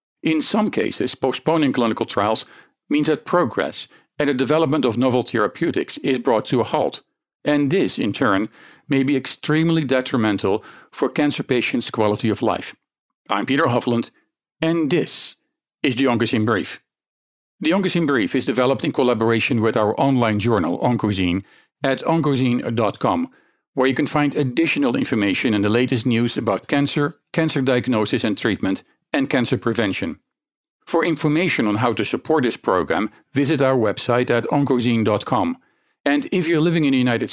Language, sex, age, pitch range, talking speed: English, male, 50-69, 120-155 Hz, 155 wpm